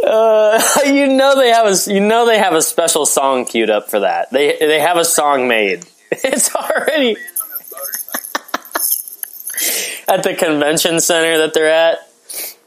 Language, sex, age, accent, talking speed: English, male, 20-39, American, 155 wpm